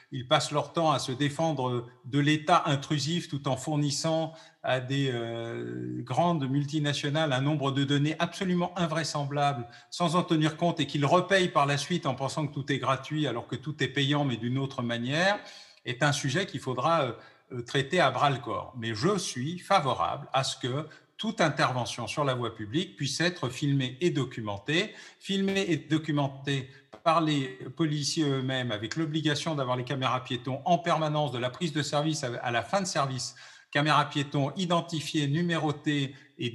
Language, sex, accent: French, male, French